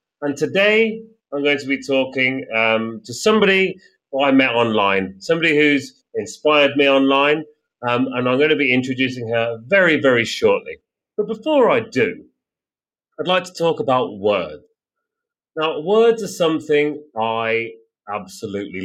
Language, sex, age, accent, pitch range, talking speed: English, male, 30-49, British, 115-175 Hz, 145 wpm